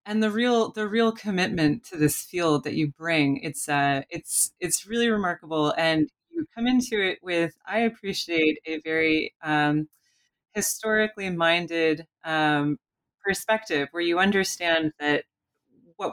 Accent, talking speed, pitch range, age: American, 140 wpm, 155-220 Hz, 30-49